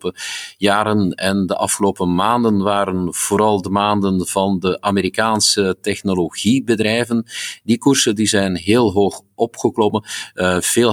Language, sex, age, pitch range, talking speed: Dutch, male, 50-69, 90-110 Hz, 115 wpm